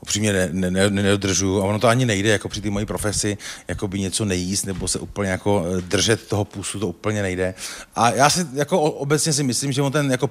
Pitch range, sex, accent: 95-110 Hz, male, native